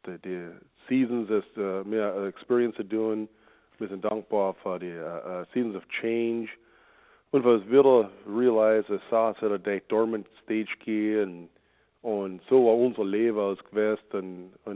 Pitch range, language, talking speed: 95-115 Hz, English, 165 wpm